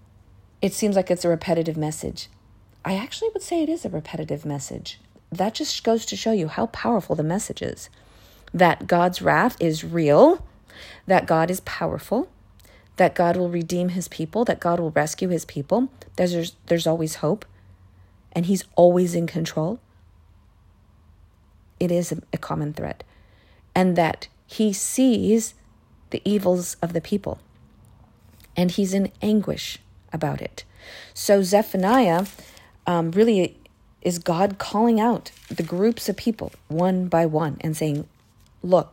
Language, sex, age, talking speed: English, female, 40-59, 145 wpm